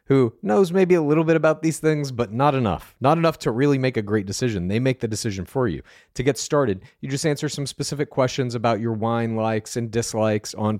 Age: 40-59